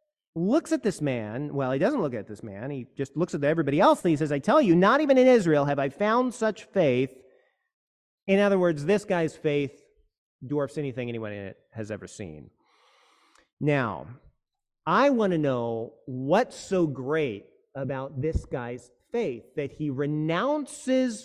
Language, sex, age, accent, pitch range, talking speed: English, male, 40-59, American, 140-220 Hz, 165 wpm